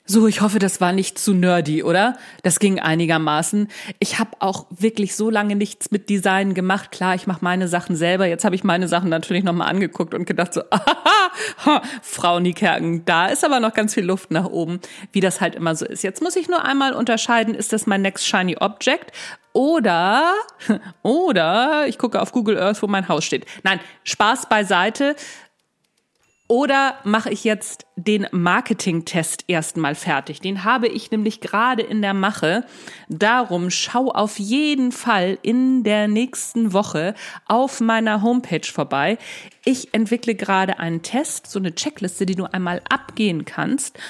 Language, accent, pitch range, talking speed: German, German, 180-230 Hz, 170 wpm